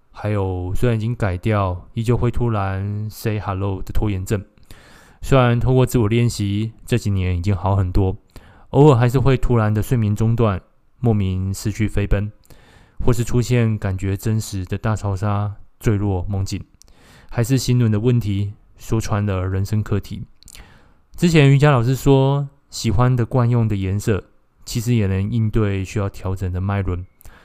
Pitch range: 95-115 Hz